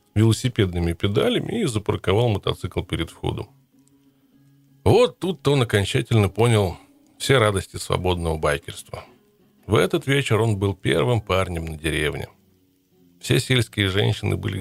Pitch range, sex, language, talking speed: 95-130 Hz, male, Russian, 120 wpm